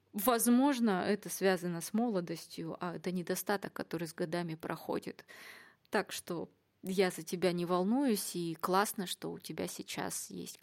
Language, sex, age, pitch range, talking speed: Russian, female, 20-39, 180-240 Hz, 145 wpm